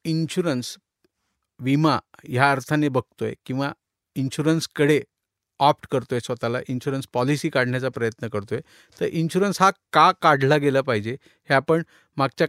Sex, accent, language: male, native, Marathi